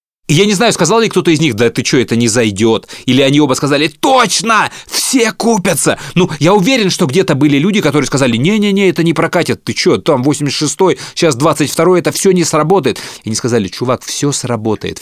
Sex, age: male, 30-49